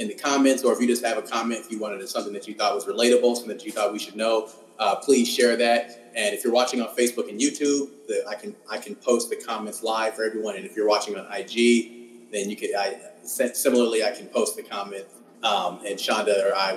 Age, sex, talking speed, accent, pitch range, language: 30-49, male, 250 wpm, American, 115-165 Hz, English